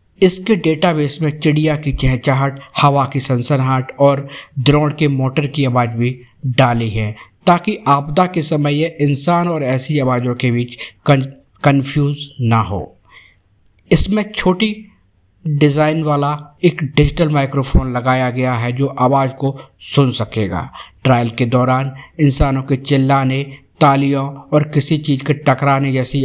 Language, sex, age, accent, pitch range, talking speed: Hindi, male, 50-69, native, 125-150 Hz, 135 wpm